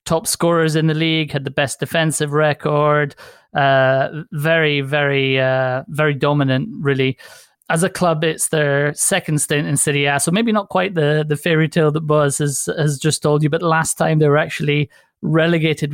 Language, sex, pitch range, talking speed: English, male, 145-165 Hz, 180 wpm